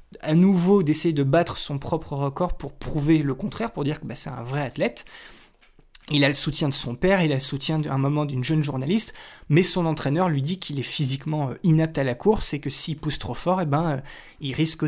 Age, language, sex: 20-39, French, male